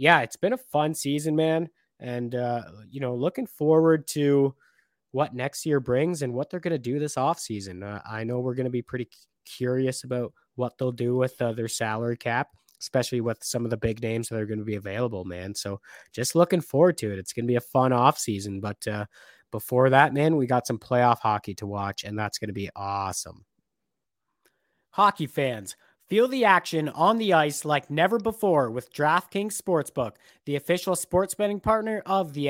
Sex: male